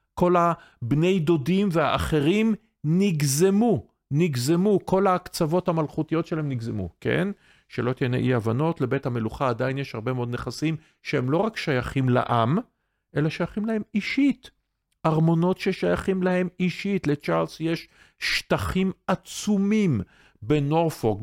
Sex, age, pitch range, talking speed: male, 50-69, 125-175 Hz, 115 wpm